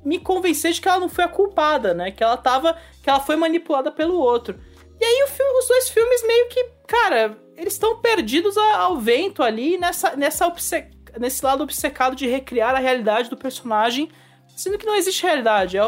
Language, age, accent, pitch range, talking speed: English, 20-39, Brazilian, 215-335 Hz, 195 wpm